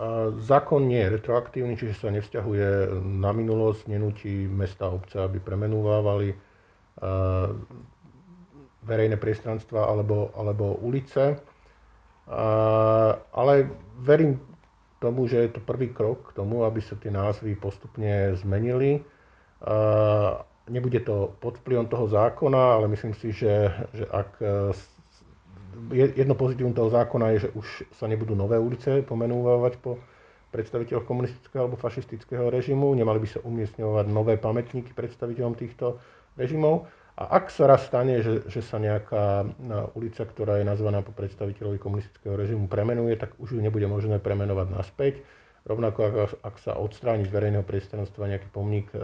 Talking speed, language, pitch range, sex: 135 wpm, Slovak, 100-120 Hz, male